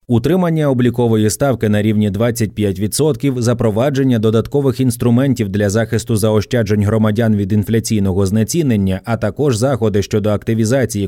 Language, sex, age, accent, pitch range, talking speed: Ukrainian, male, 20-39, native, 105-135 Hz, 115 wpm